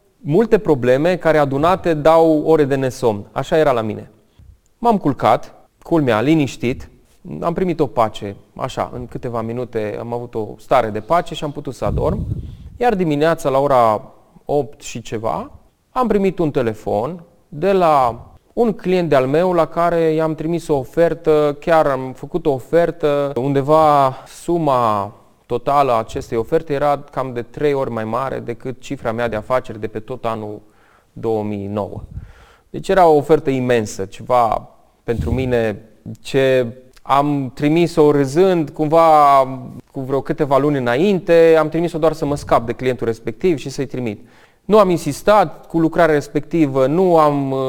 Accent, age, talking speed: native, 30-49, 155 wpm